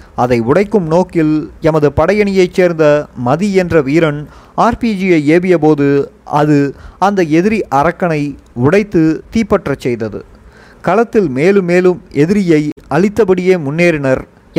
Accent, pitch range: native, 140-185 Hz